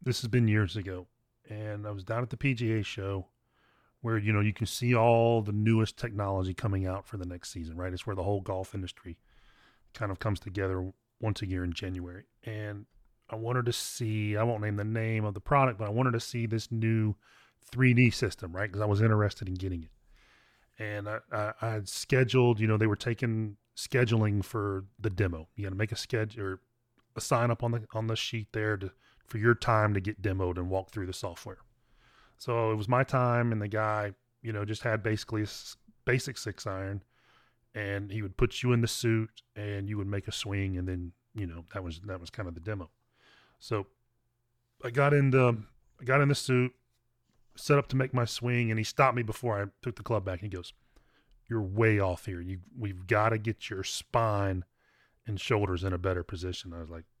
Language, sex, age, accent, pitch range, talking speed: English, male, 20-39, American, 100-120 Hz, 220 wpm